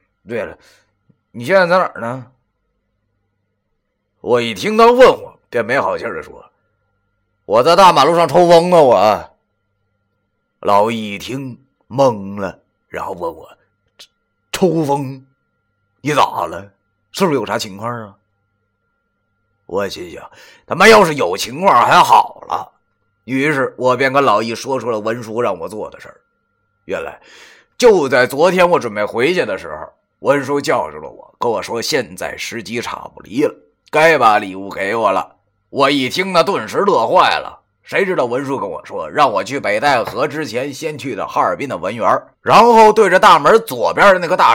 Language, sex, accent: Chinese, male, native